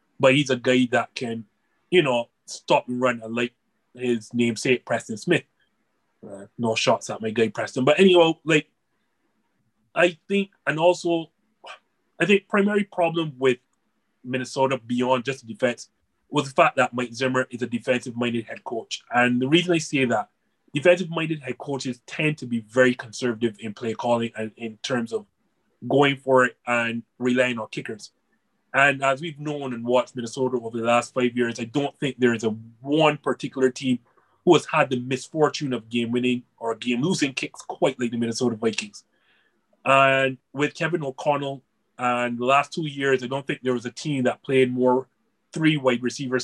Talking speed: 180 wpm